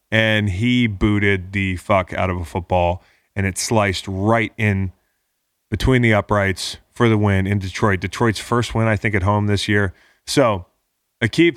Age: 20-39